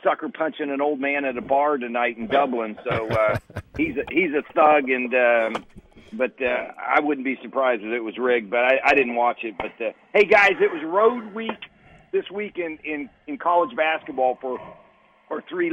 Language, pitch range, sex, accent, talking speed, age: English, 135-175 Hz, male, American, 200 wpm, 50-69